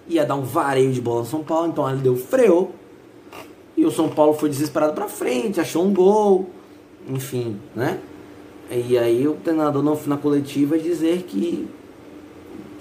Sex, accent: male, Brazilian